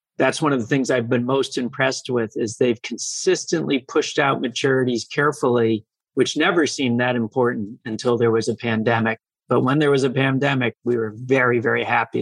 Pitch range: 120-150 Hz